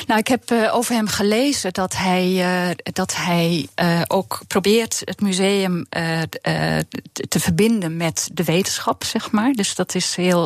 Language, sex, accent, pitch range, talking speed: Dutch, female, Dutch, 170-220 Hz, 165 wpm